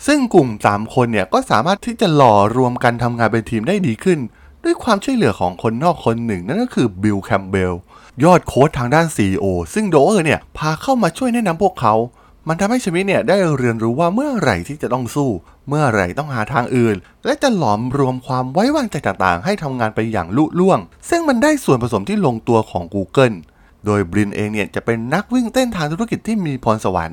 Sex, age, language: male, 20-39, Thai